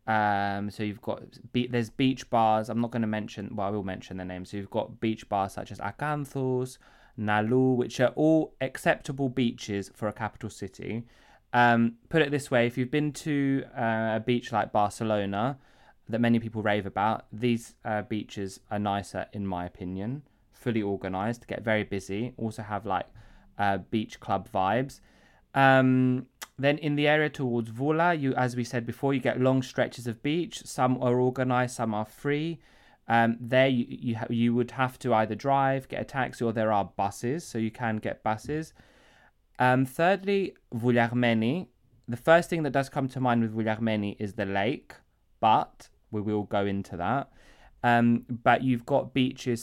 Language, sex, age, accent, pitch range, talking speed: Greek, male, 20-39, British, 105-130 Hz, 180 wpm